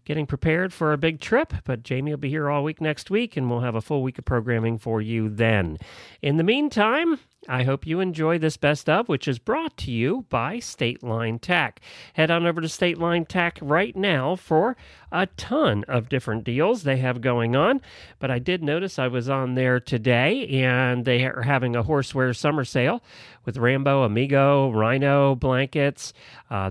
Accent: American